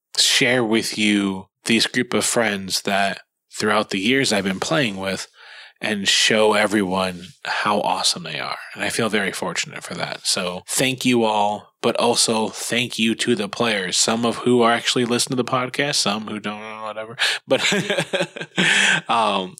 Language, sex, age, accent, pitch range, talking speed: English, male, 20-39, American, 100-120 Hz, 170 wpm